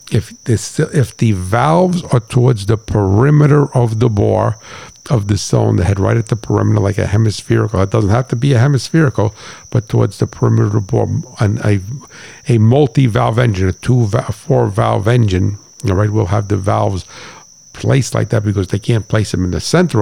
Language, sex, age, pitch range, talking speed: English, male, 50-69, 105-125 Hz, 185 wpm